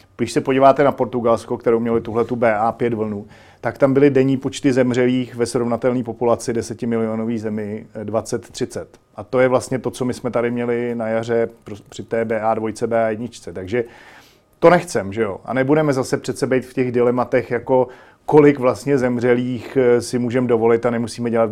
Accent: native